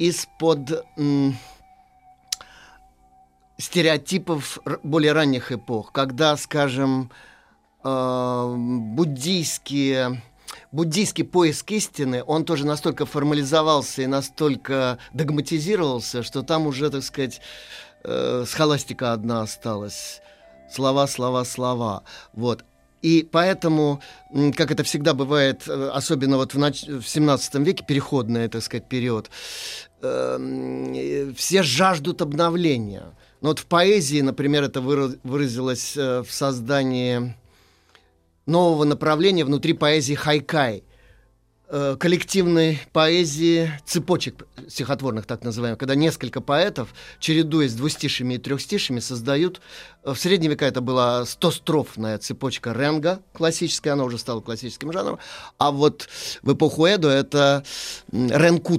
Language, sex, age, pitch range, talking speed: Russian, male, 30-49, 125-160 Hz, 100 wpm